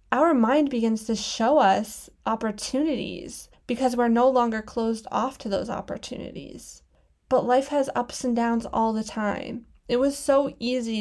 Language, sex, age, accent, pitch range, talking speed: English, female, 20-39, American, 210-255 Hz, 160 wpm